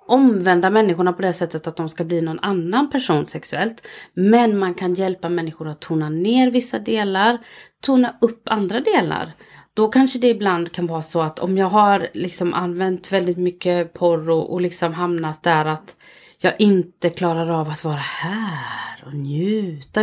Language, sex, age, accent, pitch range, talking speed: Swedish, female, 30-49, native, 165-230 Hz, 170 wpm